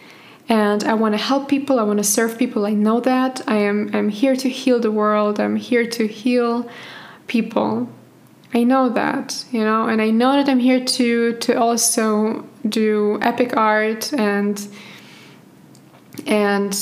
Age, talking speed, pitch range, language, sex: 20-39, 165 wpm, 210-245 Hz, English, female